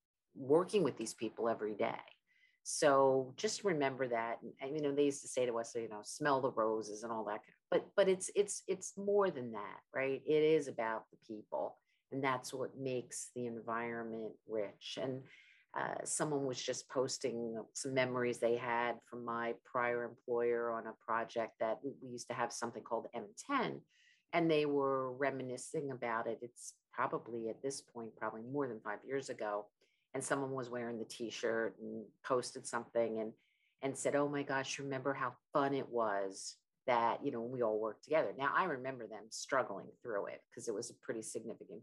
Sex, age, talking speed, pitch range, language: female, 50-69, 185 wpm, 115-140 Hz, English